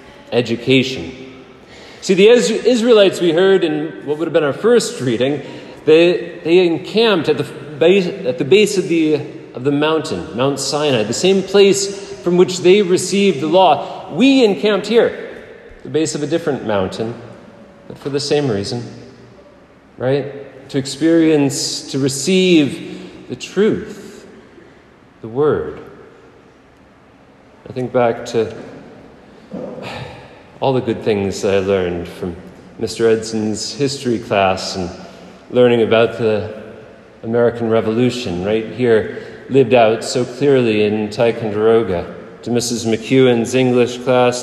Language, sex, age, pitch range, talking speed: English, male, 40-59, 115-165 Hz, 130 wpm